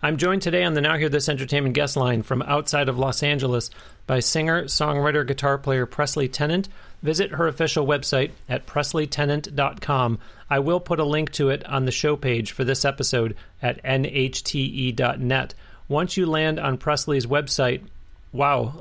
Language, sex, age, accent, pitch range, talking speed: English, male, 40-59, American, 130-155 Hz, 165 wpm